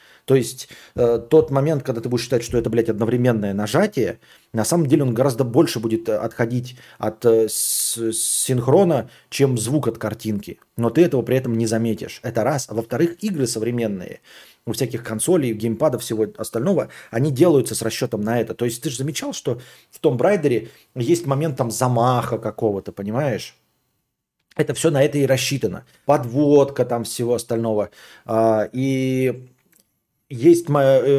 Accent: native